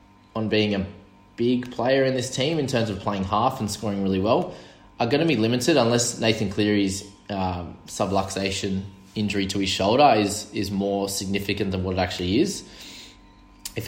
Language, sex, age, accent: English, male, 20-39, Australian